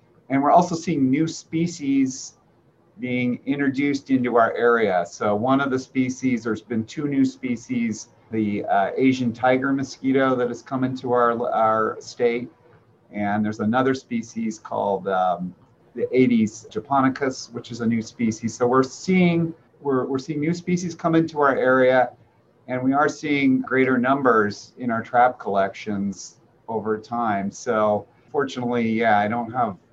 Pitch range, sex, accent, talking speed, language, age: 115-140 Hz, male, American, 155 wpm, English, 40-59